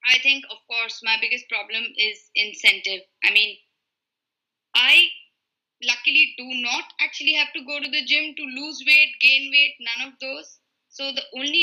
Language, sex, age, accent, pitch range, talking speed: English, female, 20-39, Indian, 220-285 Hz, 170 wpm